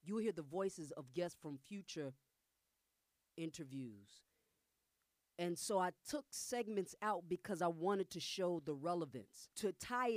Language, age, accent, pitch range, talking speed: English, 40-59, American, 165-215 Hz, 140 wpm